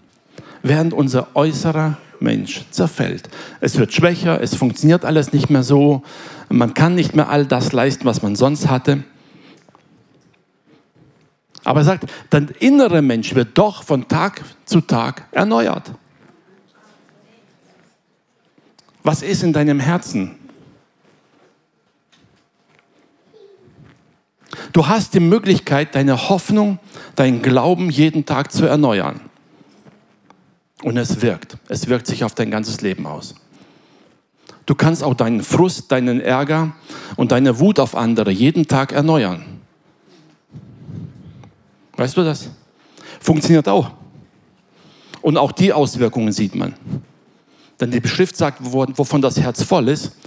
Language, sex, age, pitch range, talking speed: German, male, 60-79, 130-165 Hz, 120 wpm